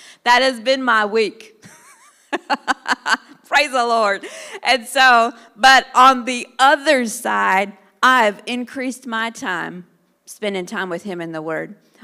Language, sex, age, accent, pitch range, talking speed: English, female, 40-59, American, 185-250 Hz, 130 wpm